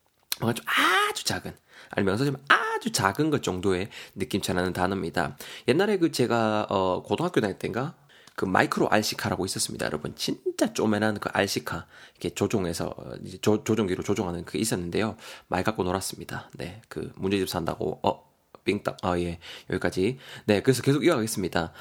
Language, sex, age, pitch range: Korean, male, 20-39, 95-145 Hz